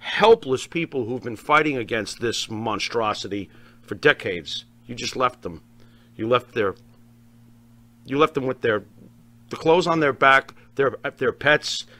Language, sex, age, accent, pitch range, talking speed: English, male, 50-69, American, 115-145 Hz, 150 wpm